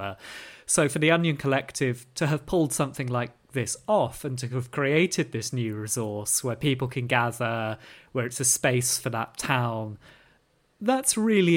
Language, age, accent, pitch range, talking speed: English, 30-49, British, 120-155 Hz, 165 wpm